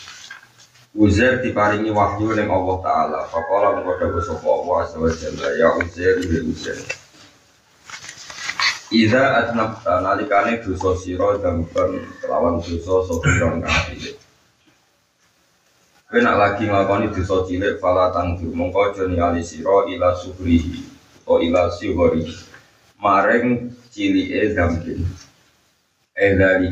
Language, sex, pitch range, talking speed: Indonesian, male, 85-110 Hz, 90 wpm